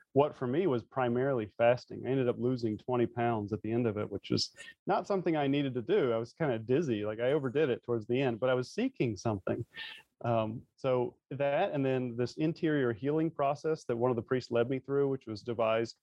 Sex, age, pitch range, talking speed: male, 30-49, 115-135 Hz, 230 wpm